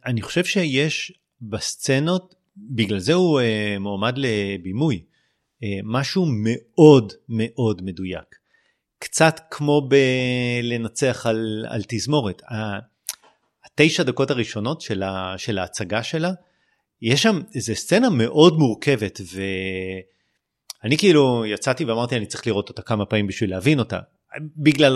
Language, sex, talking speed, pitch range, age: Hebrew, male, 120 wpm, 105-145 Hz, 30-49